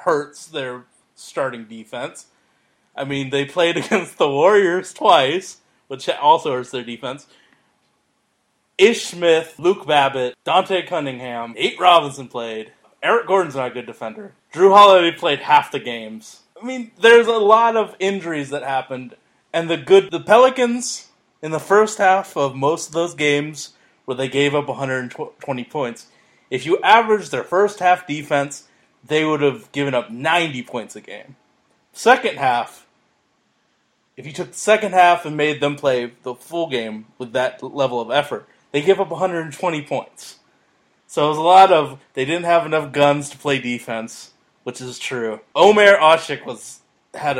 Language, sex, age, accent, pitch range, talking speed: English, male, 30-49, American, 130-180 Hz, 160 wpm